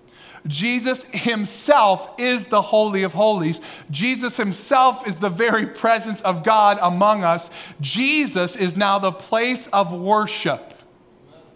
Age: 40-59